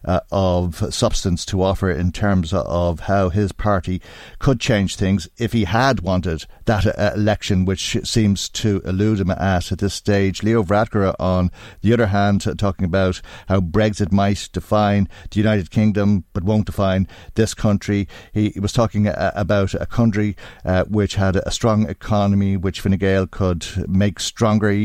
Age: 50-69